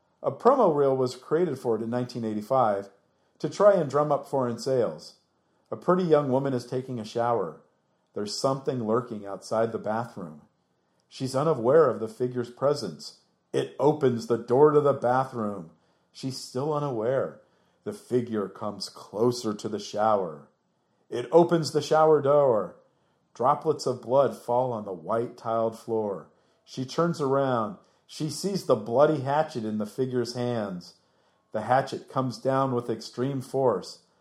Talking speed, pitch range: 150 wpm, 110-140 Hz